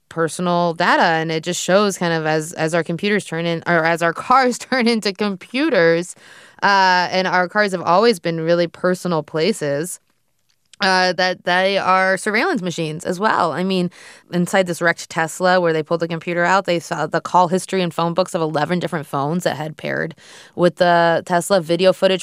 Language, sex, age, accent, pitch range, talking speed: English, female, 20-39, American, 155-185 Hz, 190 wpm